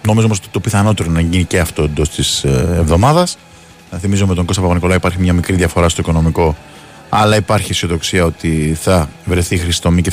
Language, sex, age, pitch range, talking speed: Greek, male, 20-39, 80-115 Hz, 185 wpm